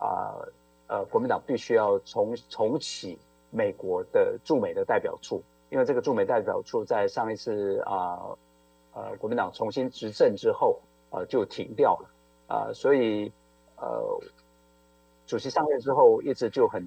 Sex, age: male, 50-69